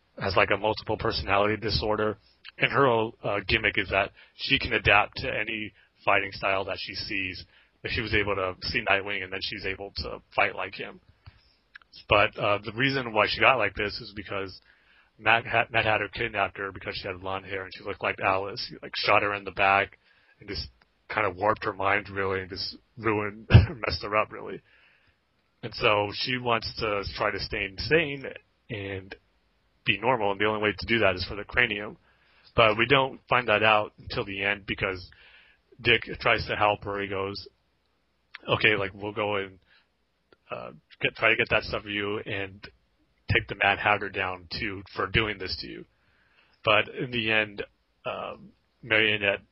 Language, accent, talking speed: English, American, 190 wpm